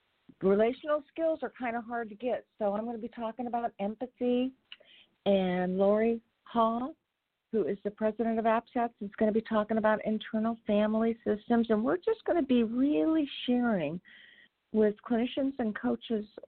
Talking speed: 170 wpm